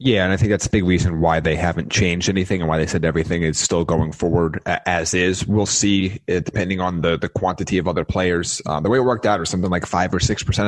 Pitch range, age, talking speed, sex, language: 85-105 Hz, 30-49, 270 wpm, male, English